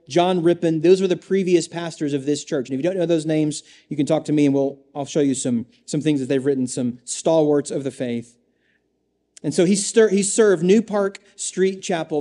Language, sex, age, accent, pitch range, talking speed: English, male, 30-49, American, 145-170 Hz, 235 wpm